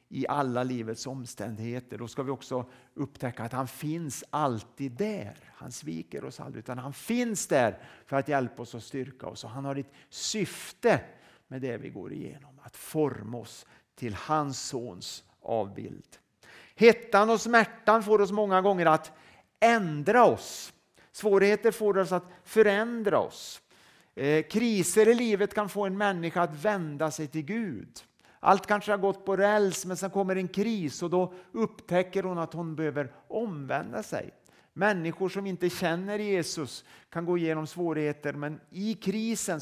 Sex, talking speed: male, 160 wpm